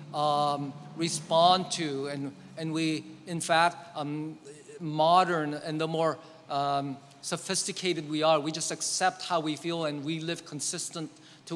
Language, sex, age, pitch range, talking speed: English, male, 40-59, 155-200 Hz, 145 wpm